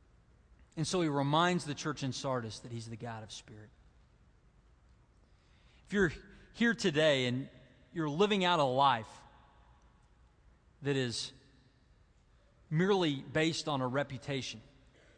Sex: male